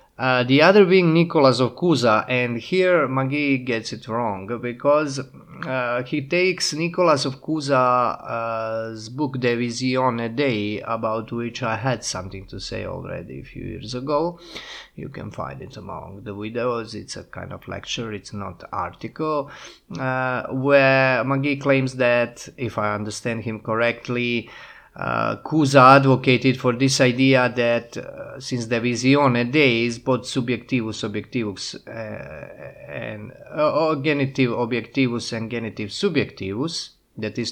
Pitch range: 110-135 Hz